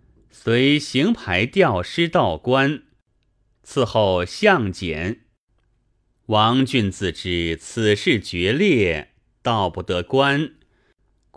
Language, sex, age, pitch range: Chinese, male, 30-49, 95-130 Hz